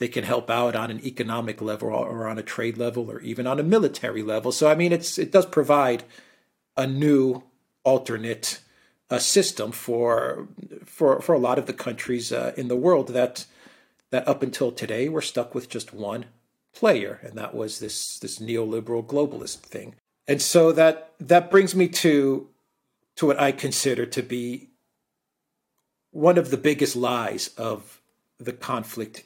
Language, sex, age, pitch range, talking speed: English, male, 50-69, 115-145 Hz, 170 wpm